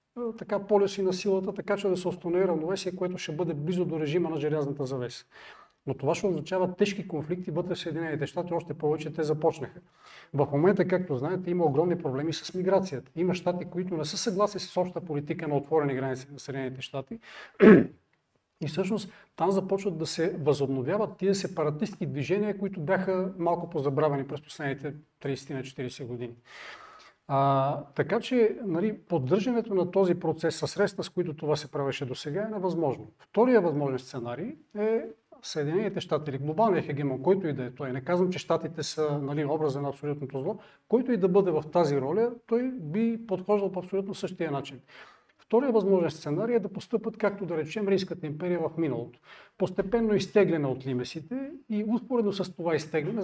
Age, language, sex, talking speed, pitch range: 40-59, Bulgarian, male, 170 wpm, 145-195 Hz